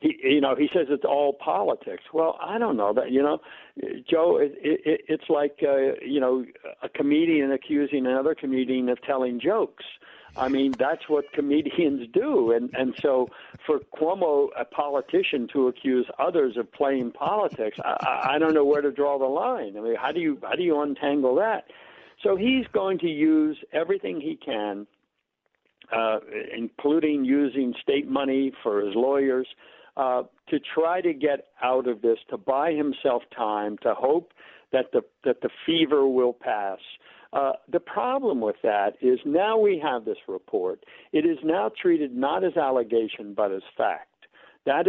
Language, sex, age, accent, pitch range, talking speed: English, male, 60-79, American, 125-195 Hz, 170 wpm